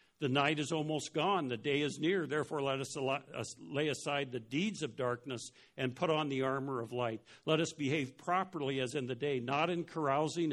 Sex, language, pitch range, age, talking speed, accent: male, English, 120-150 Hz, 60-79, 205 wpm, American